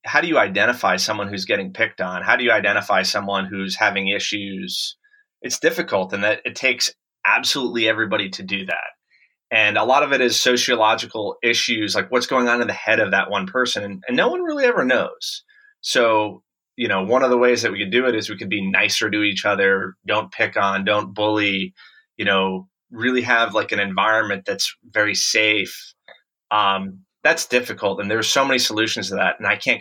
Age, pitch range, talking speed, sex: 30-49, 100-140 Hz, 205 wpm, male